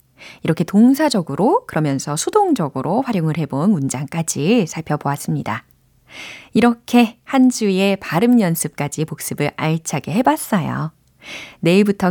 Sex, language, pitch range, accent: female, Korean, 155-240 Hz, native